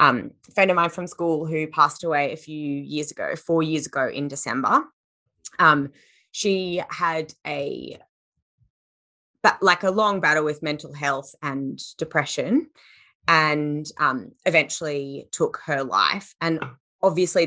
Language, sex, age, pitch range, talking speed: English, female, 20-39, 145-170 Hz, 135 wpm